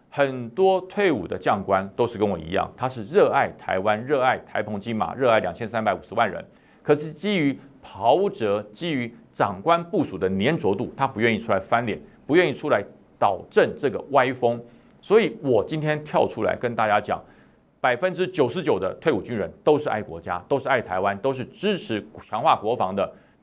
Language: Chinese